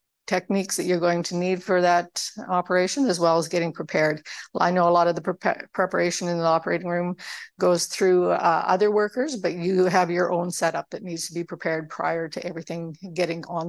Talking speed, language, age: 200 wpm, English, 50-69